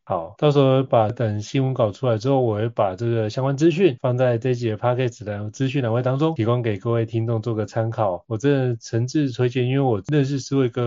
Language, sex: Chinese, male